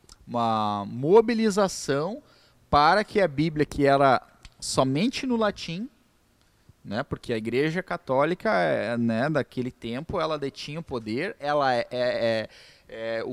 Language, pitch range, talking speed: Portuguese, 120-190 Hz, 130 wpm